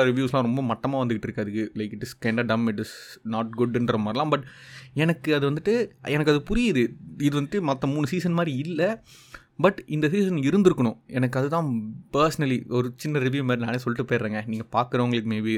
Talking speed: 140 wpm